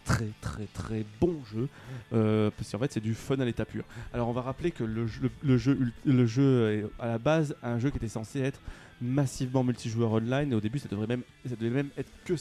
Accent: French